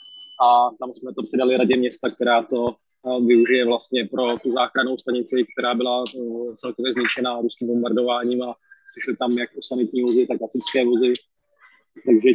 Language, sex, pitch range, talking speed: Slovak, male, 120-130 Hz, 160 wpm